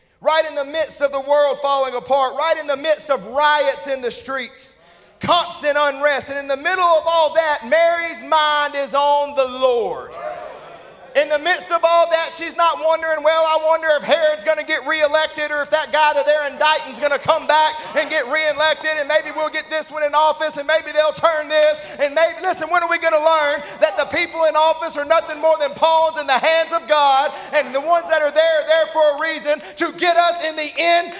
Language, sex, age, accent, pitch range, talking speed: English, male, 30-49, American, 285-340 Hz, 230 wpm